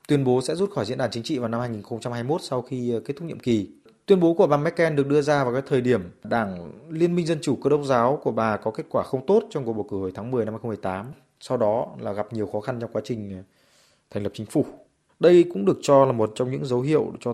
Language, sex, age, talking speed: Vietnamese, male, 20-39, 275 wpm